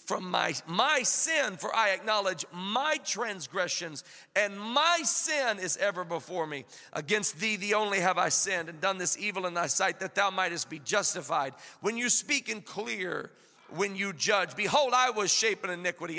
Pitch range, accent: 190-295 Hz, American